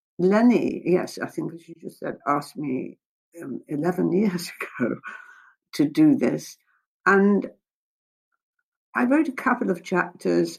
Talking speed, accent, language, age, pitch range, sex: 135 wpm, British, English, 60-79, 155-210 Hz, female